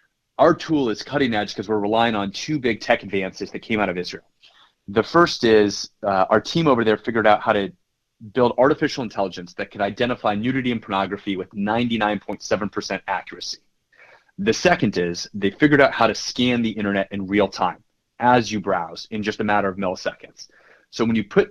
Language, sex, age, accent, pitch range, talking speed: English, male, 30-49, American, 100-125 Hz, 195 wpm